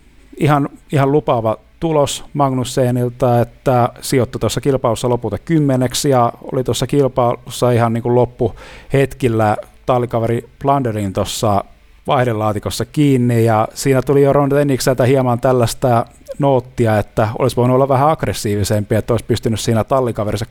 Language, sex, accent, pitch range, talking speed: Finnish, male, native, 105-130 Hz, 125 wpm